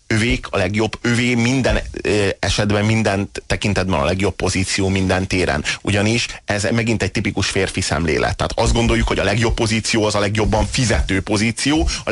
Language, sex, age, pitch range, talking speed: Hungarian, male, 30-49, 100-115 Hz, 170 wpm